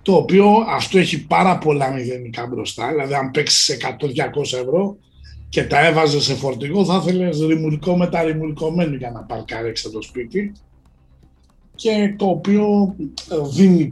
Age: 60-79